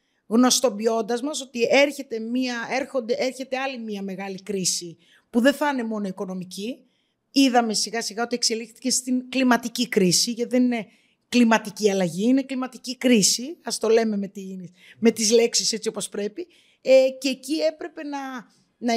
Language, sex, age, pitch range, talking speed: Greek, female, 20-39, 210-265 Hz, 140 wpm